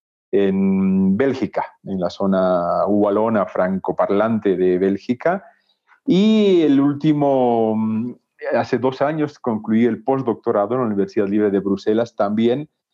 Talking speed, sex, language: 115 wpm, male, Spanish